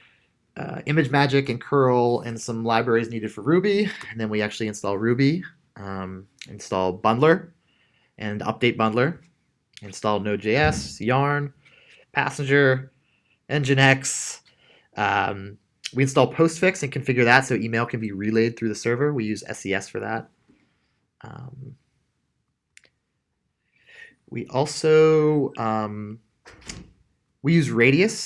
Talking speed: 115 wpm